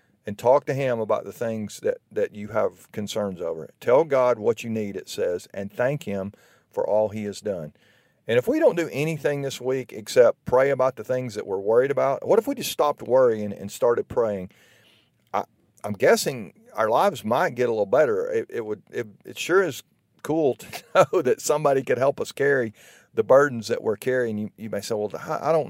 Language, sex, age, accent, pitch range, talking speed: English, male, 40-59, American, 110-155 Hz, 215 wpm